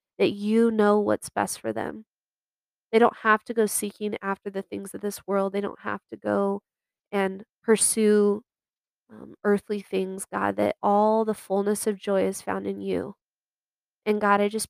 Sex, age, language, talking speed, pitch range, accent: female, 20-39, English, 180 wpm, 195-220 Hz, American